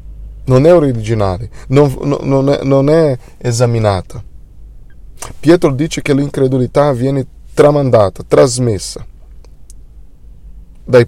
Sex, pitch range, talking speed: male, 110-140 Hz, 85 wpm